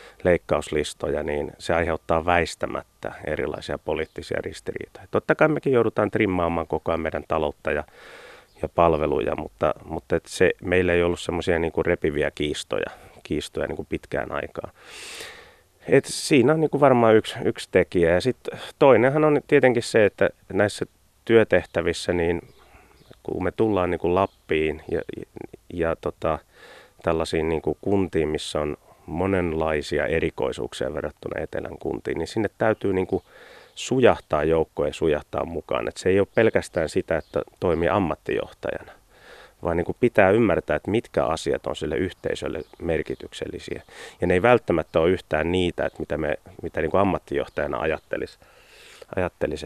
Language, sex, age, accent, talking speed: Finnish, male, 30-49, native, 140 wpm